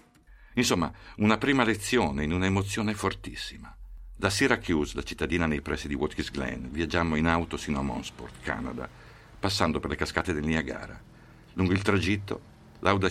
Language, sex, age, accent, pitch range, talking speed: Italian, male, 50-69, native, 75-95 Hz, 150 wpm